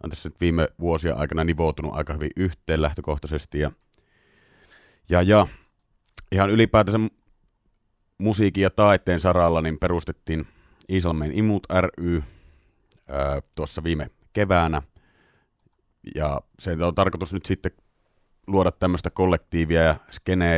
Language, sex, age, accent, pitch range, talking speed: Finnish, male, 30-49, native, 75-95 Hz, 115 wpm